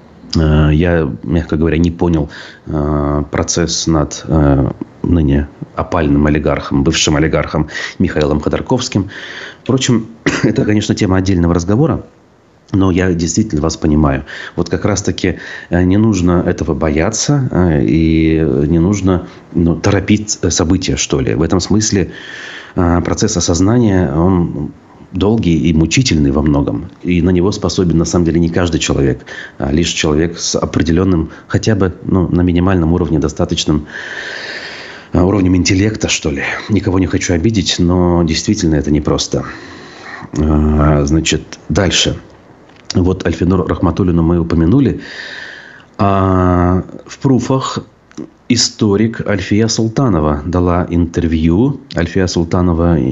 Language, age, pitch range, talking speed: Russian, 30-49, 80-95 Hz, 115 wpm